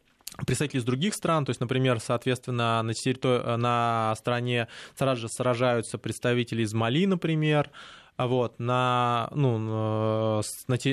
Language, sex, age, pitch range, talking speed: Russian, male, 20-39, 115-140 Hz, 120 wpm